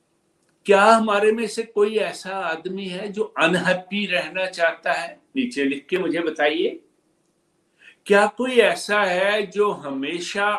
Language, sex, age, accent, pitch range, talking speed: Hindi, male, 60-79, native, 145-205 Hz, 135 wpm